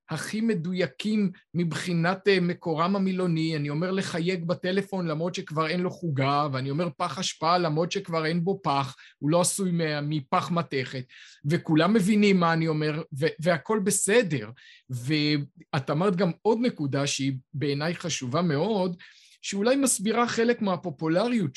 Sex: male